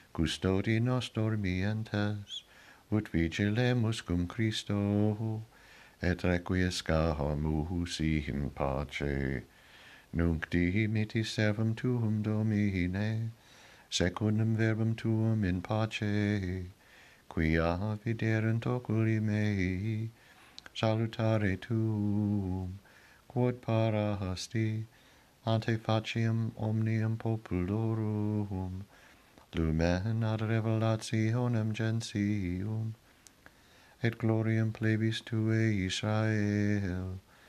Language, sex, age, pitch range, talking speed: English, male, 60-79, 95-110 Hz, 70 wpm